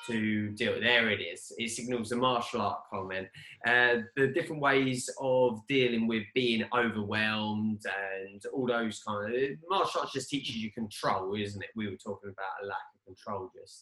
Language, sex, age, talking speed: English, male, 20-39, 180 wpm